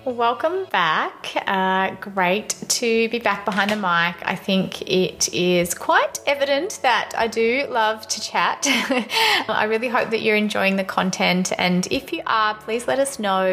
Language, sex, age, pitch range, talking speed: English, female, 20-39, 185-240 Hz, 170 wpm